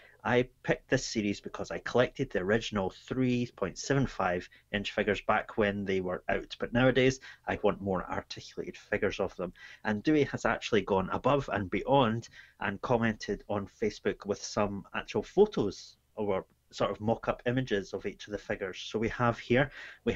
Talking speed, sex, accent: 165 wpm, male, British